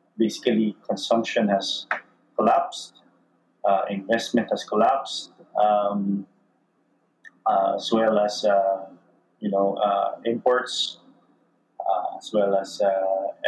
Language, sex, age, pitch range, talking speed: English, male, 30-49, 100-120 Hz, 100 wpm